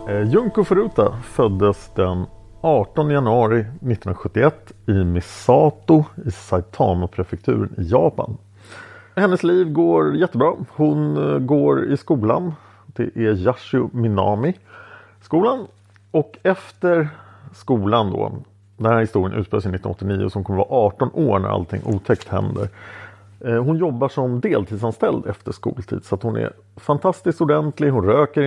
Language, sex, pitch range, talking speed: English, male, 100-135 Hz, 120 wpm